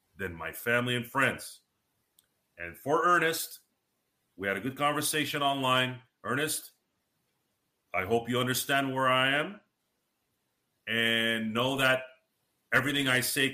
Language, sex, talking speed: English, male, 125 wpm